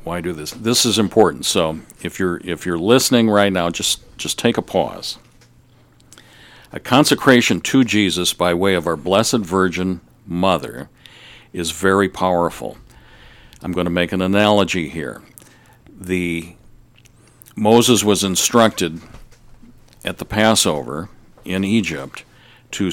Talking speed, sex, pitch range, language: 130 wpm, male, 85-105 Hz, English